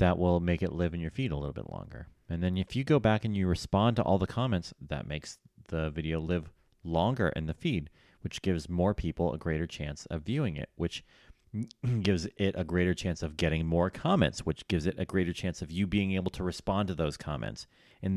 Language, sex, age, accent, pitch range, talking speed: English, male, 30-49, American, 80-95 Hz, 230 wpm